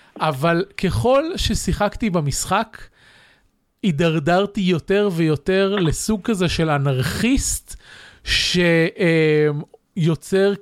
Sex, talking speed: male, 70 wpm